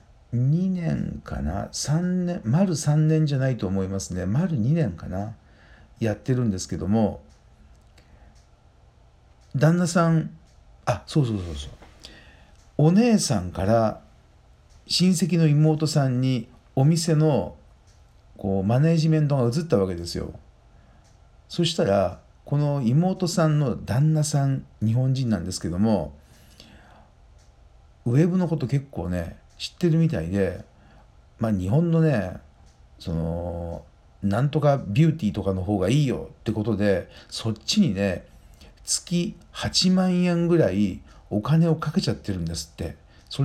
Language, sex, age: Japanese, male, 50-69